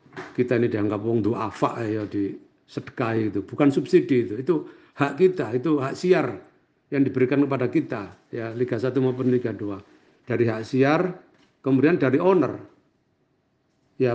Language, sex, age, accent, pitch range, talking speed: Indonesian, male, 50-69, native, 125-150 Hz, 150 wpm